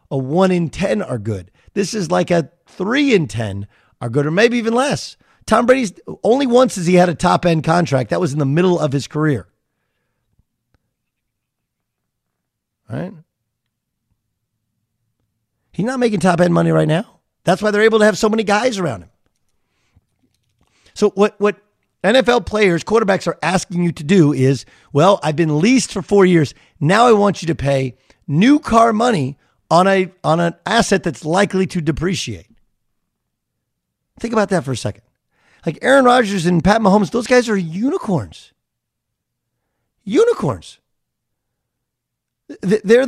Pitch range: 140-220 Hz